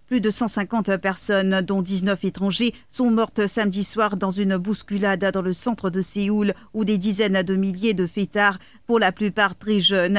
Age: 40-59